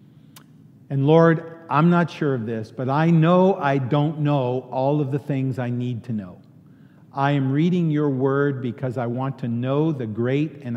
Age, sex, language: 50-69, male, English